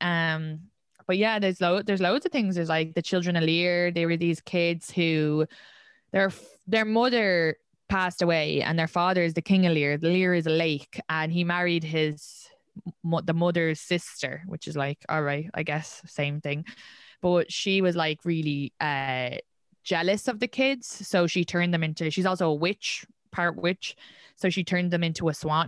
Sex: female